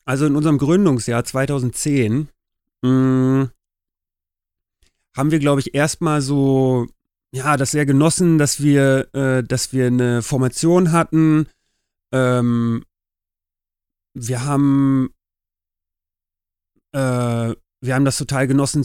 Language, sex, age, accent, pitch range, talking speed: German, male, 30-49, German, 115-140 Hz, 105 wpm